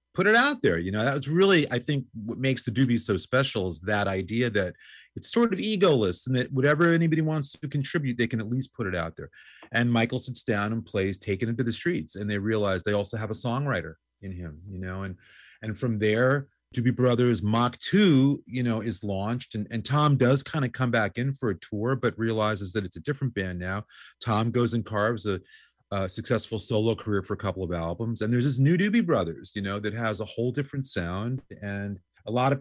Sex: male